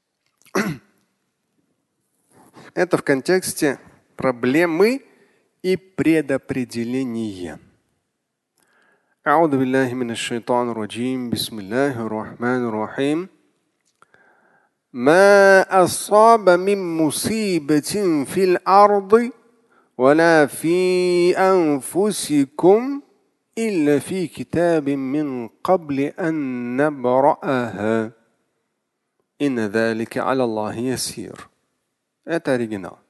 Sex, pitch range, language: male, 125-185 Hz, Russian